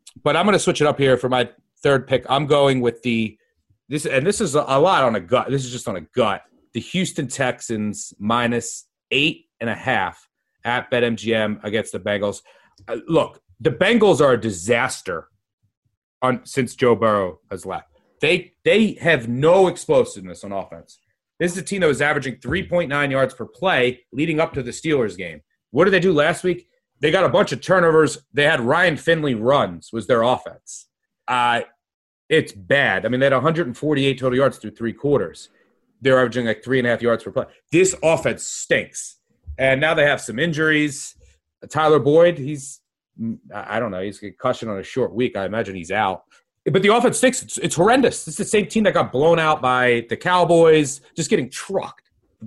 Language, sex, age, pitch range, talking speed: English, male, 30-49, 115-160 Hz, 195 wpm